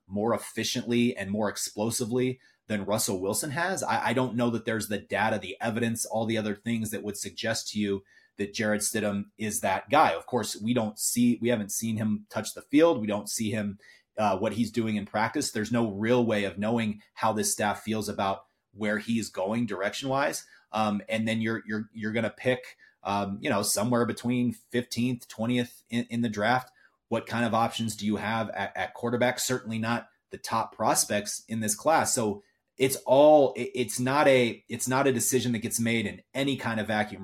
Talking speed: 200 wpm